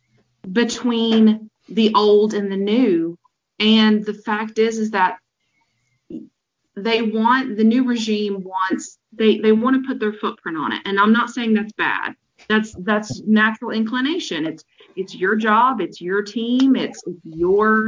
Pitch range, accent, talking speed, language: 195-230 Hz, American, 155 wpm, English